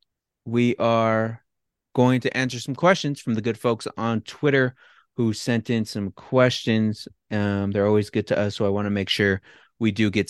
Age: 30-49